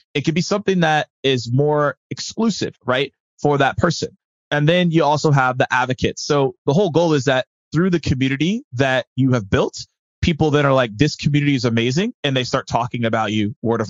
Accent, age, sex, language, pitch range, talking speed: American, 20-39, male, English, 125-175 Hz, 205 wpm